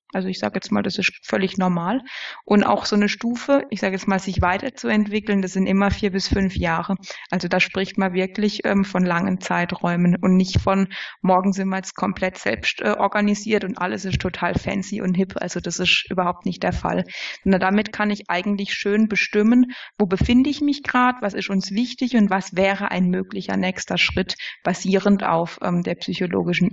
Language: German